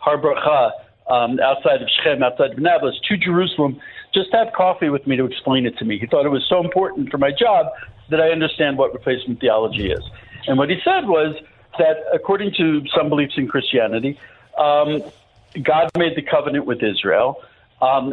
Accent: American